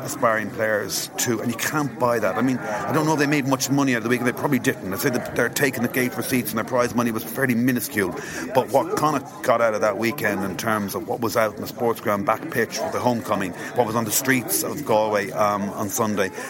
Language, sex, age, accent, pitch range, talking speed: English, male, 40-59, Irish, 110-130 Hz, 265 wpm